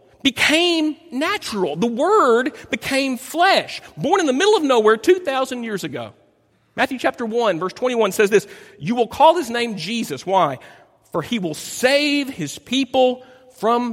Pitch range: 185-290 Hz